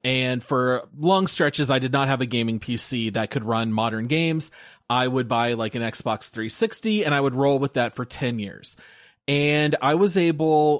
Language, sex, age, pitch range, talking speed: English, male, 30-49, 125-160 Hz, 200 wpm